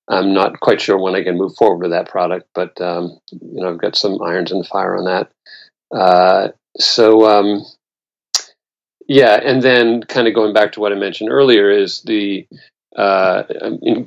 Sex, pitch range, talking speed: male, 95-115 Hz, 185 wpm